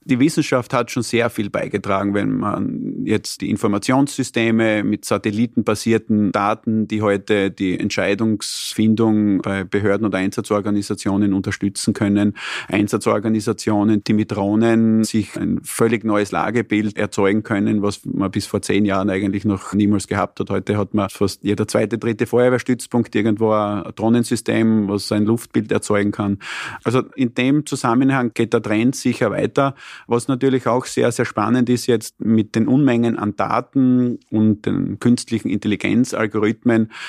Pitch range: 105-115 Hz